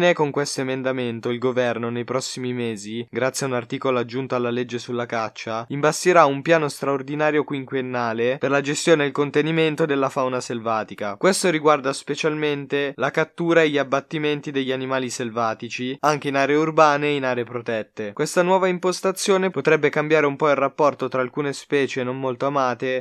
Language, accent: Italian, native